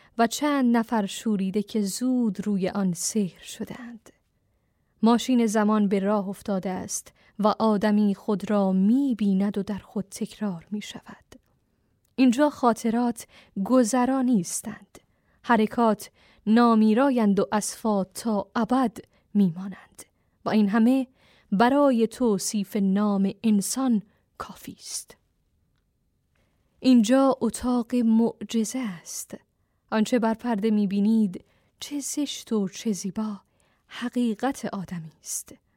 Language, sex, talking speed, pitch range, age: Persian, female, 105 wpm, 205-240 Hz, 10-29